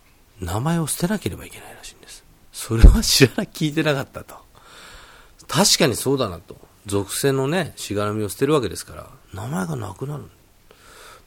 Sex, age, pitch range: male, 40-59, 100-150 Hz